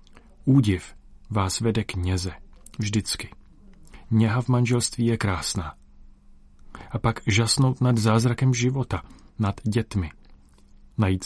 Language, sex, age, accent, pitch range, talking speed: Czech, male, 40-59, native, 90-115 Hz, 105 wpm